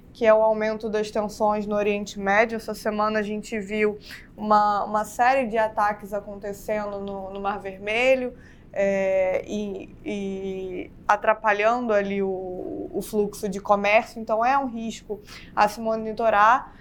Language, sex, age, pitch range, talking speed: Portuguese, female, 20-39, 205-230 Hz, 145 wpm